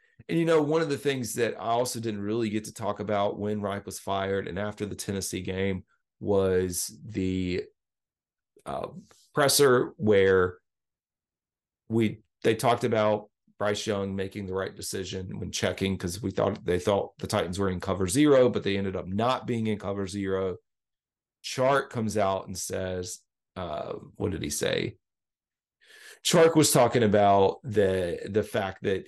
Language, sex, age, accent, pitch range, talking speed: English, male, 30-49, American, 95-115 Hz, 165 wpm